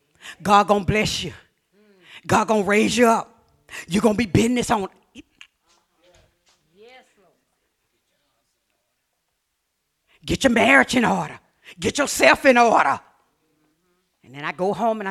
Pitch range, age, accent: 240-365 Hz, 40-59, American